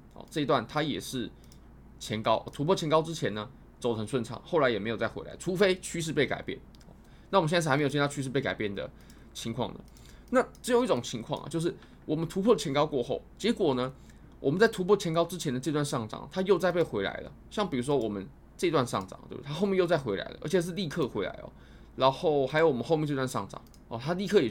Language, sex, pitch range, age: Chinese, male, 120-170 Hz, 20-39